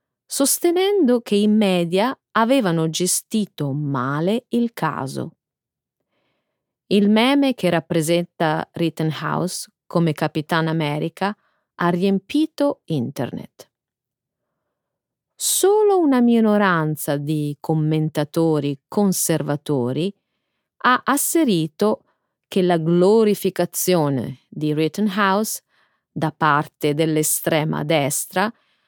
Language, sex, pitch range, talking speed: Italian, female, 155-210 Hz, 75 wpm